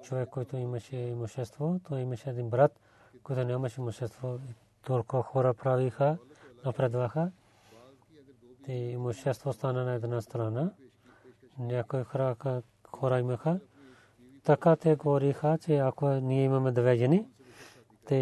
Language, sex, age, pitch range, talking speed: Bulgarian, male, 40-59, 120-140 Hz, 120 wpm